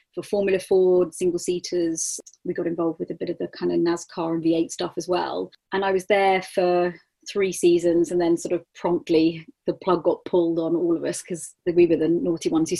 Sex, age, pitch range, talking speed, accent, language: female, 30-49, 175-210 Hz, 220 wpm, British, English